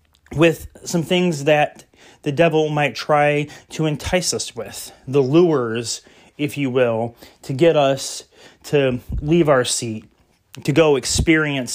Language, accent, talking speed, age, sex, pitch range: English, American, 140 wpm, 30-49, male, 130-160 Hz